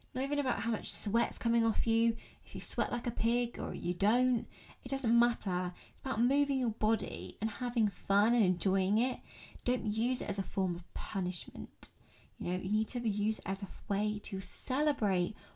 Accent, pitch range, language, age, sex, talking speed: British, 185-230 Hz, English, 20-39, female, 200 wpm